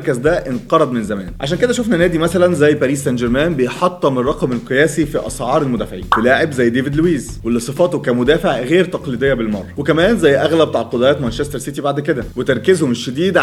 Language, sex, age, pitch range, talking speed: Arabic, male, 20-39, 130-175 Hz, 180 wpm